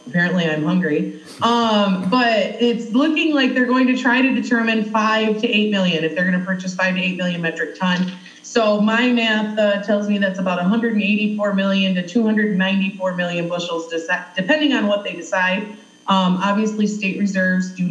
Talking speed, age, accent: 180 wpm, 30-49, American